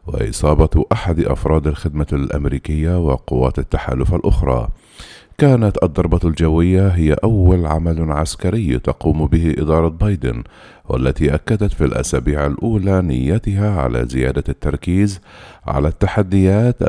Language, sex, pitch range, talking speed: Arabic, male, 70-90 Hz, 105 wpm